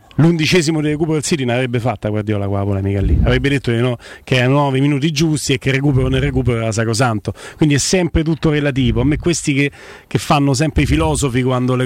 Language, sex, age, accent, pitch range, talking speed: Italian, male, 40-59, native, 140-175 Hz, 215 wpm